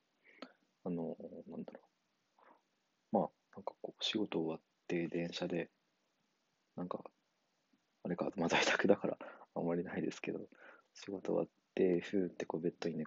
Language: Japanese